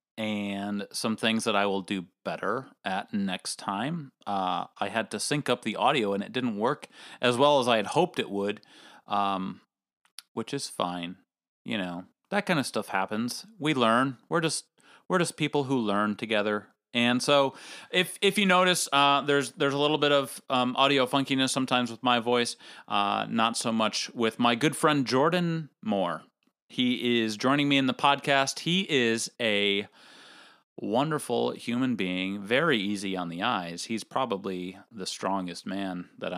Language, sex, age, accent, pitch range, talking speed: English, male, 30-49, American, 105-140 Hz, 175 wpm